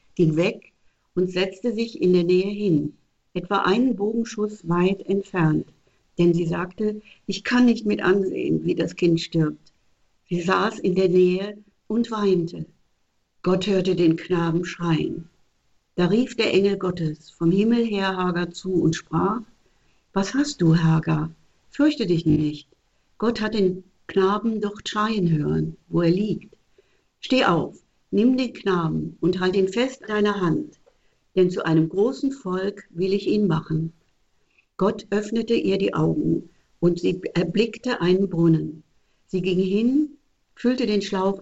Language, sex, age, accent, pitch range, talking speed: German, female, 60-79, German, 165-210 Hz, 150 wpm